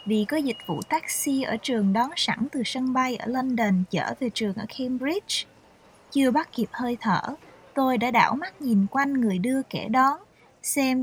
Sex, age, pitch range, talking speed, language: female, 20-39, 225-290 Hz, 190 wpm, Vietnamese